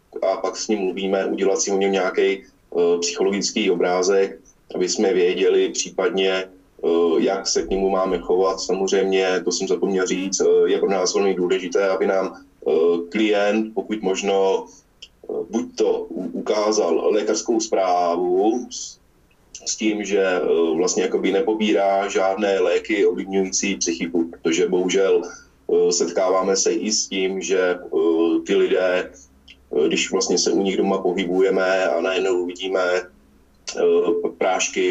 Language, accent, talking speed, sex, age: English, Czech, 140 wpm, male, 20-39